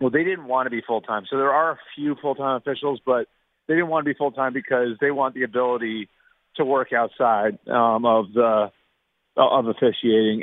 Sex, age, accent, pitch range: male, 40-59, American, 110-130 Hz